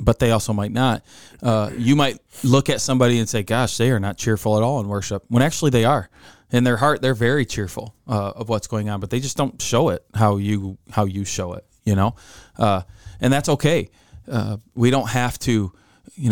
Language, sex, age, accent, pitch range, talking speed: English, male, 20-39, American, 105-130 Hz, 225 wpm